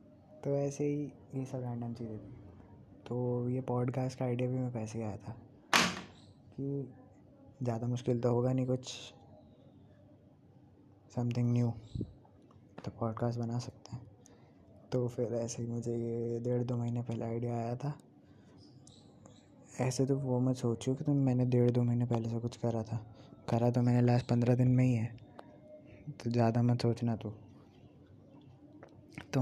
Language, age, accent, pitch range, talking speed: Hindi, 20-39, native, 115-130 Hz, 155 wpm